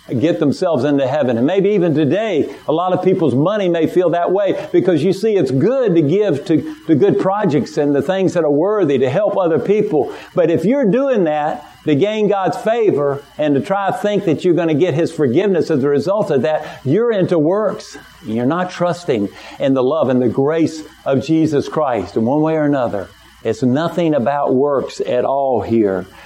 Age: 50-69